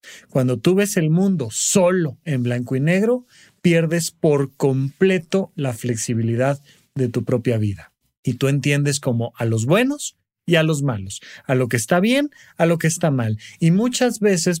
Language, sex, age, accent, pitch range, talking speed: Spanish, male, 40-59, Mexican, 120-170 Hz, 175 wpm